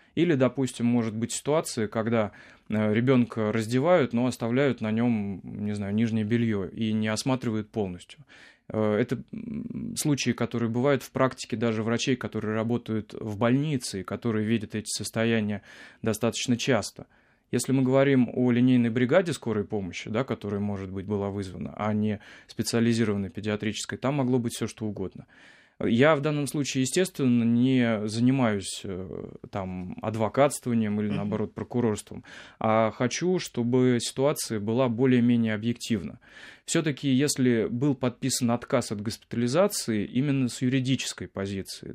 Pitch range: 110-130 Hz